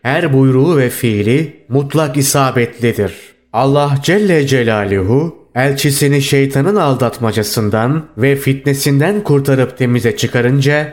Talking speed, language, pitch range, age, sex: 95 wpm, Turkish, 125-150 Hz, 30-49, male